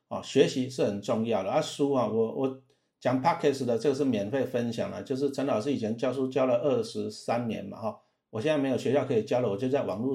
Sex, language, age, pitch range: male, Chinese, 50-69, 120-145 Hz